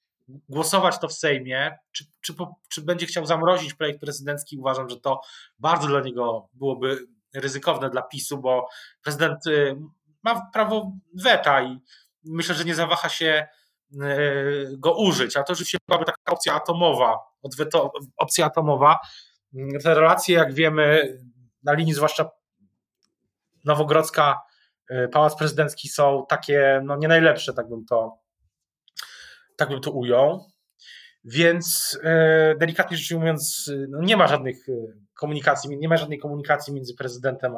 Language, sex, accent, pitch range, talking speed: Polish, male, native, 130-165 Hz, 130 wpm